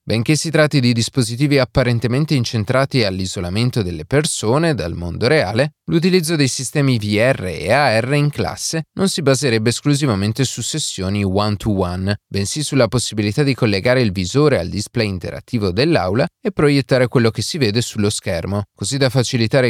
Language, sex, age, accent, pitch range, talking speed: Italian, male, 30-49, native, 100-140 Hz, 160 wpm